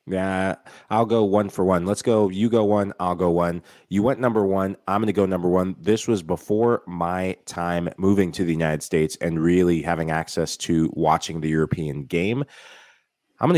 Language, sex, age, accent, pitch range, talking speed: English, male, 30-49, American, 85-110 Hz, 200 wpm